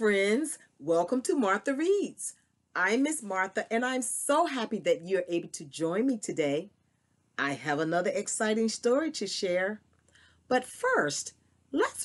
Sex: female